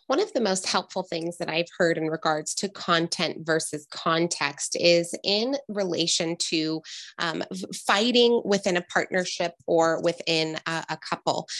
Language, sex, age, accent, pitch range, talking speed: English, female, 20-39, American, 165-205 Hz, 150 wpm